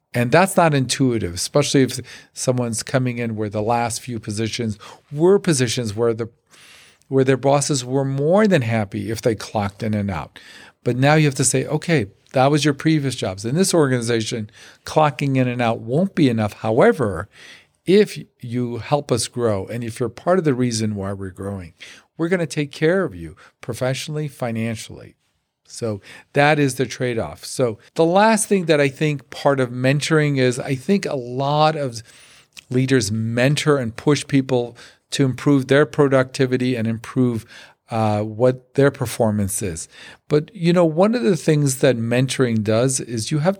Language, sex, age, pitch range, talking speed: English, male, 50-69, 115-145 Hz, 175 wpm